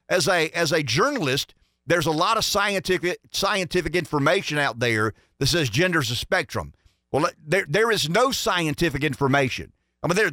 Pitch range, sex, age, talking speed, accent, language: 125-185 Hz, male, 50-69, 170 wpm, American, English